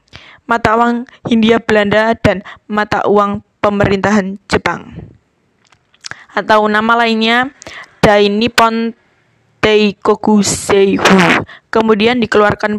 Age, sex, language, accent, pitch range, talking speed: 20-39, female, Indonesian, native, 200-235 Hz, 85 wpm